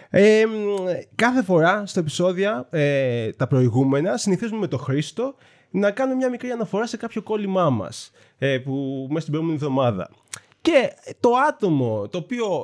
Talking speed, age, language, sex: 155 wpm, 20-39, Greek, male